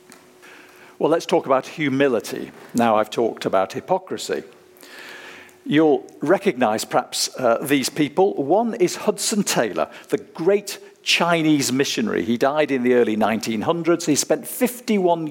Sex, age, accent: male, 50-69, British